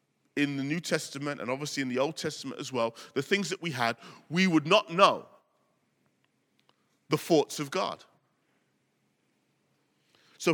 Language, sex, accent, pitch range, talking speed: English, male, British, 115-145 Hz, 150 wpm